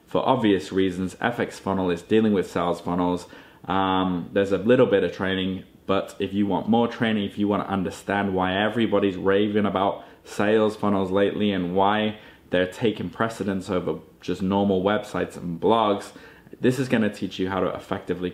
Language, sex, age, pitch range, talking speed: English, male, 20-39, 95-105 Hz, 180 wpm